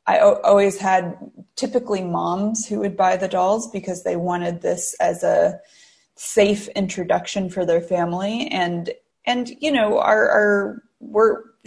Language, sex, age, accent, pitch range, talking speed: English, female, 20-39, American, 180-210 Hz, 145 wpm